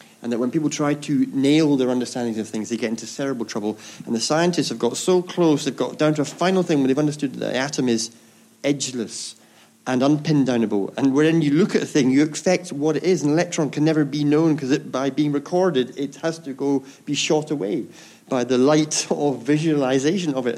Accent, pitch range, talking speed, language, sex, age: British, 115-155 Hz, 225 wpm, English, male, 40-59